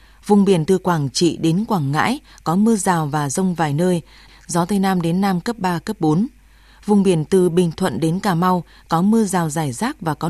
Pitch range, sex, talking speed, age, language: 160-205 Hz, female, 225 wpm, 20-39, Vietnamese